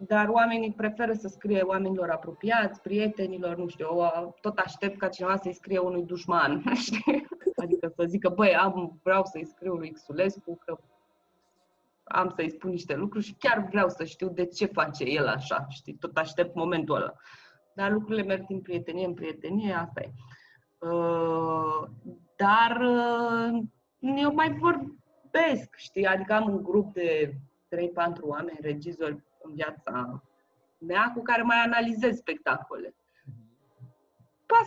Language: Romanian